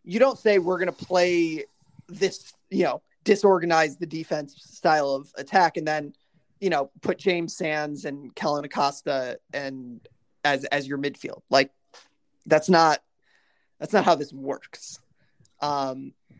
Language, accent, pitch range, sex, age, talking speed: English, American, 150-185 Hz, male, 30-49, 145 wpm